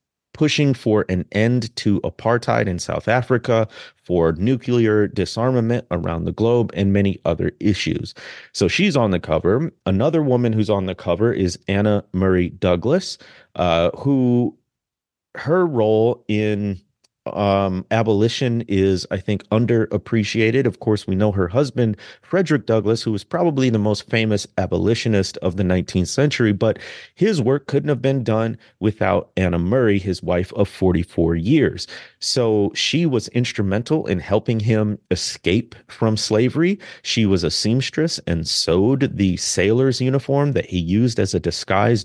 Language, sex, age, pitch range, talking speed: English, male, 30-49, 95-120 Hz, 150 wpm